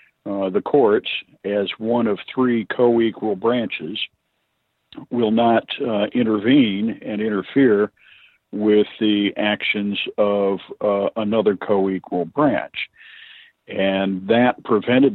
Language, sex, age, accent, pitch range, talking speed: English, male, 50-69, American, 95-115 Hz, 105 wpm